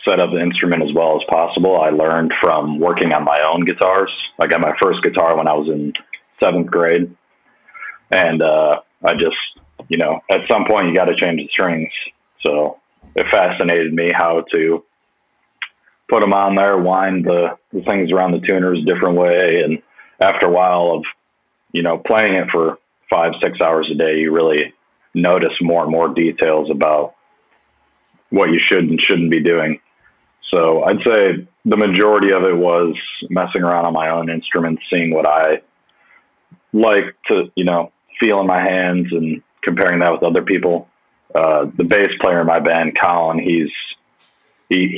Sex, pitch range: male, 80-90 Hz